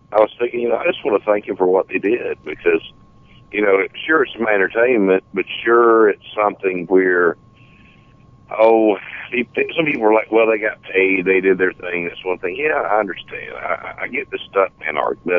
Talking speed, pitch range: 205 wpm, 95-130 Hz